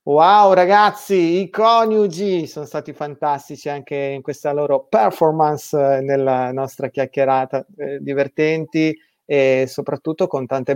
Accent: native